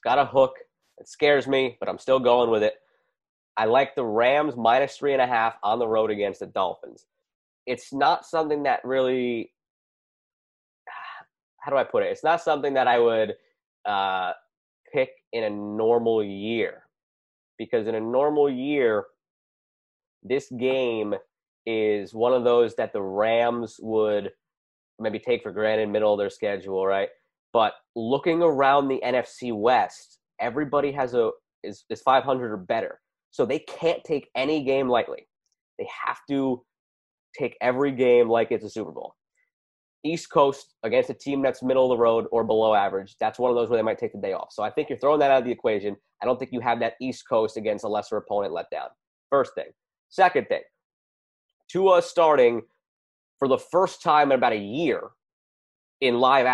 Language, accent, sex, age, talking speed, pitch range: English, American, male, 20-39, 185 wpm, 110-155 Hz